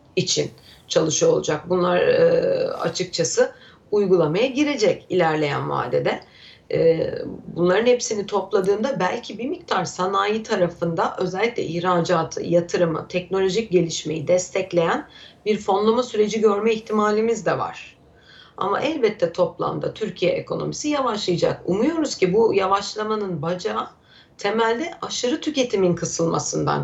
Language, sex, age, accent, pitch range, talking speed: Turkish, female, 40-59, native, 175-245 Hz, 105 wpm